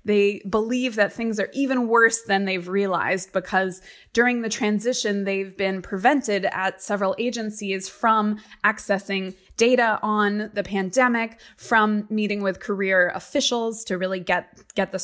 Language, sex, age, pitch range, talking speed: English, female, 20-39, 195-220 Hz, 145 wpm